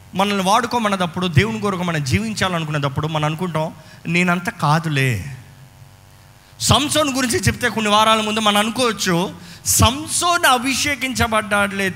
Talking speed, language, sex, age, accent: 100 wpm, Telugu, male, 20-39, native